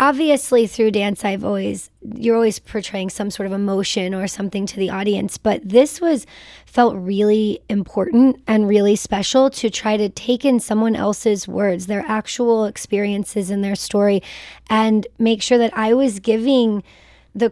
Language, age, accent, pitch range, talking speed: English, 20-39, American, 205-235 Hz, 165 wpm